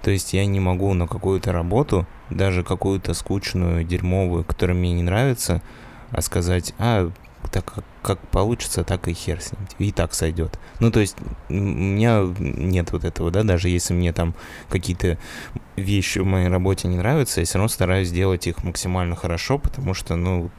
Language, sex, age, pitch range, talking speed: Russian, male, 20-39, 85-100 Hz, 175 wpm